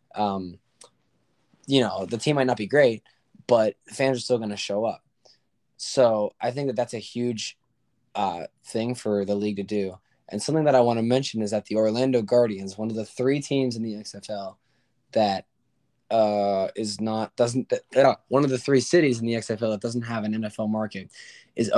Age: 20-39